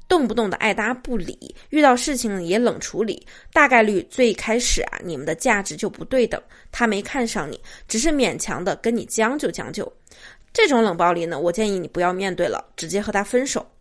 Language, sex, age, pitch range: Chinese, female, 20-39, 205-265 Hz